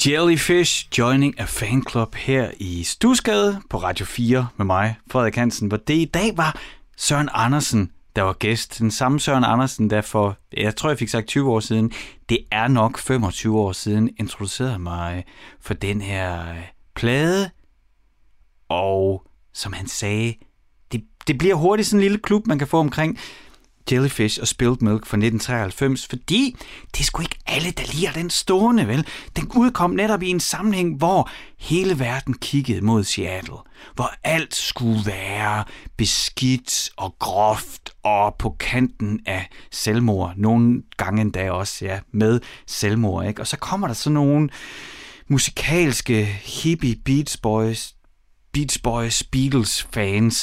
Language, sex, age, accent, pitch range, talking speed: Danish, male, 30-49, native, 105-145 Hz, 145 wpm